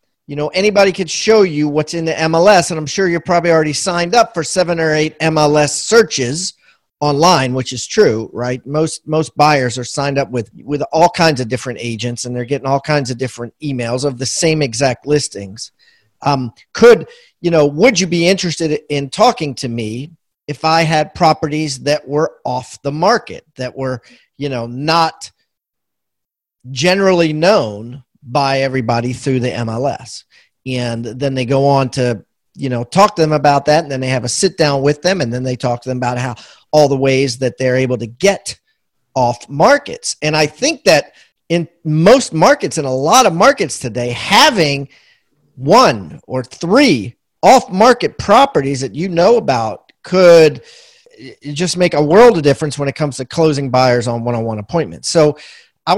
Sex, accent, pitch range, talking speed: male, American, 130-170 Hz, 180 wpm